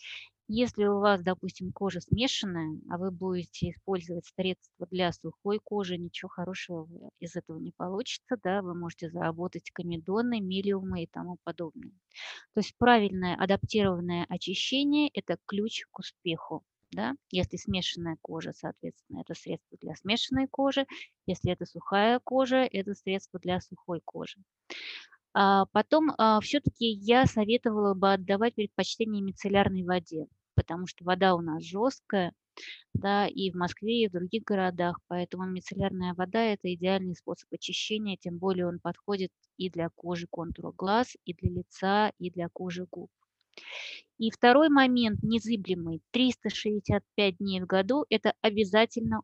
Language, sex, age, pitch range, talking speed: Russian, female, 20-39, 180-215 Hz, 135 wpm